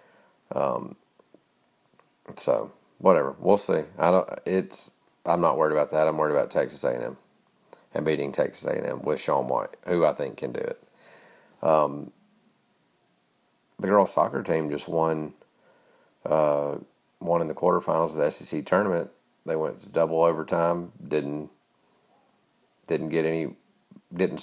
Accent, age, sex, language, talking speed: American, 40-59, male, English, 140 wpm